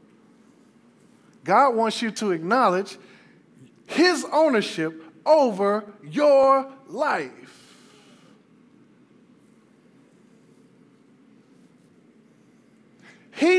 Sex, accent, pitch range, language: male, American, 215-285 Hz, English